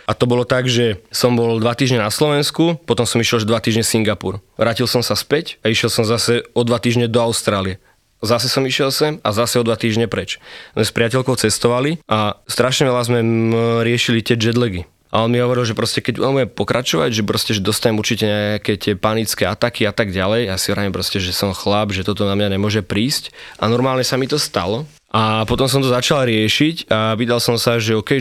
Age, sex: 20-39, male